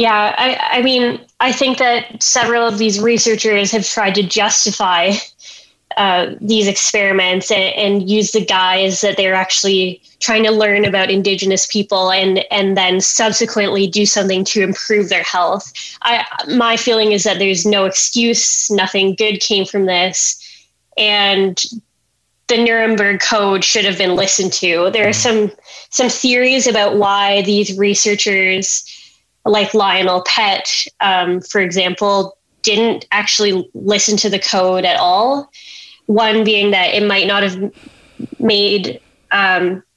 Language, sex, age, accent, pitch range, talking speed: English, female, 10-29, American, 195-220 Hz, 145 wpm